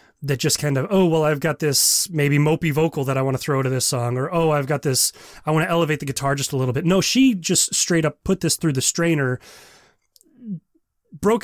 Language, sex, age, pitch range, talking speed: English, male, 30-49, 135-180 Hz, 240 wpm